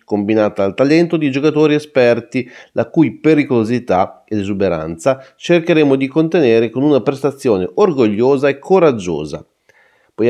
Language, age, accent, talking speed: Italian, 30-49, native, 120 wpm